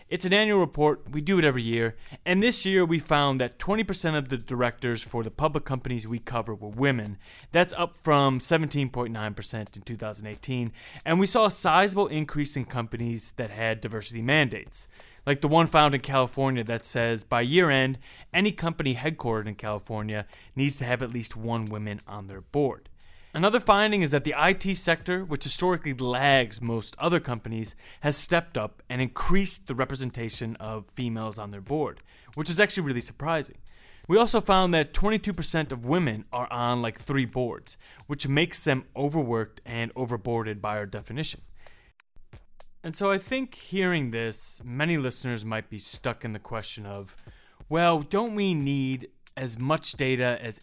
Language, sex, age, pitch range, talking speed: English, male, 20-39, 115-155 Hz, 170 wpm